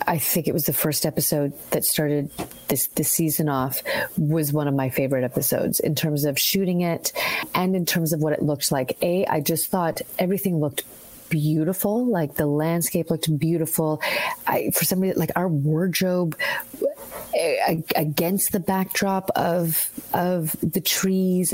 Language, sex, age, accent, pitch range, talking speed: English, female, 30-49, American, 155-190 Hz, 165 wpm